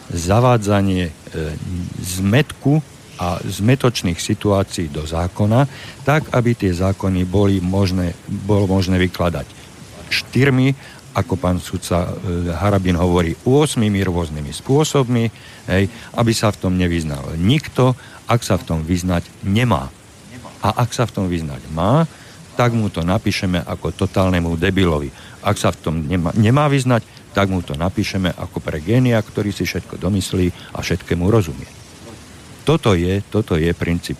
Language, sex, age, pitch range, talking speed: Slovak, male, 50-69, 85-115 Hz, 140 wpm